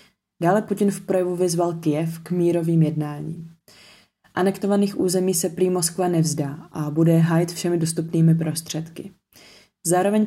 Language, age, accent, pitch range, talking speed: Czech, 20-39, native, 160-175 Hz, 130 wpm